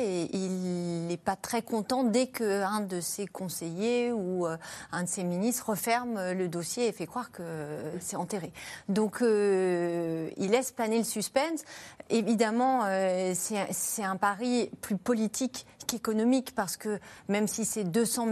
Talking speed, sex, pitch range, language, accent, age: 155 wpm, female, 185-240 Hz, French, French, 30-49